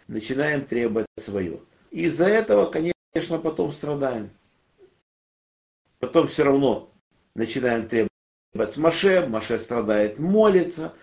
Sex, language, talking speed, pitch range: male, Russian, 100 wpm, 115-160 Hz